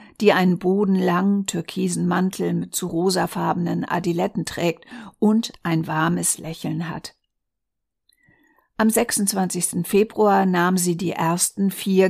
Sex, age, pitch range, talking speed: female, 50-69, 175-220 Hz, 115 wpm